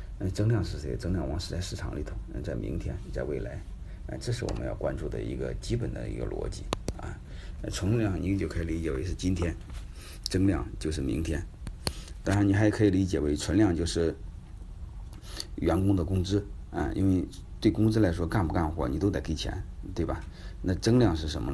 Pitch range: 80-100 Hz